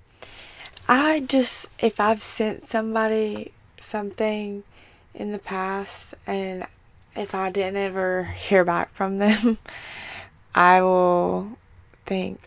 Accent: American